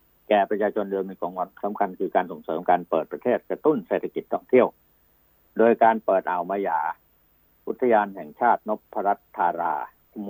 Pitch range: 80-115 Hz